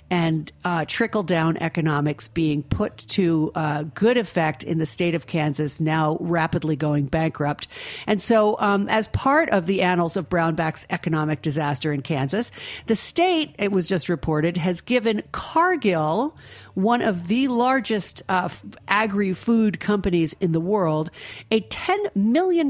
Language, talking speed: English, 150 wpm